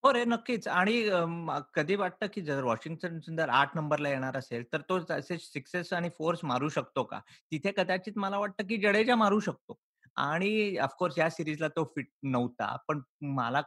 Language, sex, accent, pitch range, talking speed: Marathi, male, native, 145-200 Hz, 170 wpm